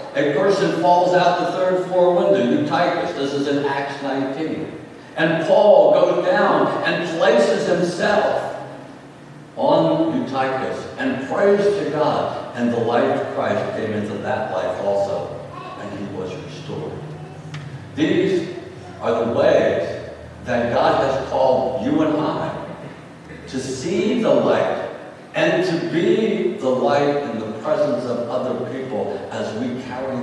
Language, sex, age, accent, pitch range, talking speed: English, male, 60-79, American, 135-180 Hz, 140 wpm